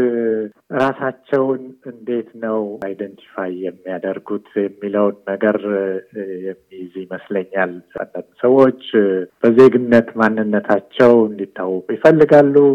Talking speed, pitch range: 65 wpm, 105-125 Hz